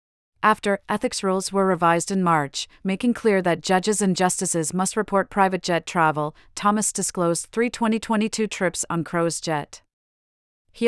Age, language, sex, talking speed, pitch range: 40-59, English, female, 150 wpm, 170-205 Hz